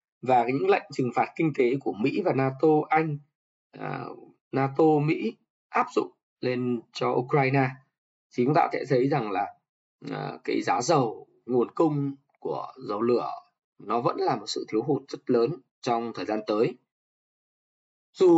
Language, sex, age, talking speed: Vietnamese, male, 20-39, 165 wpm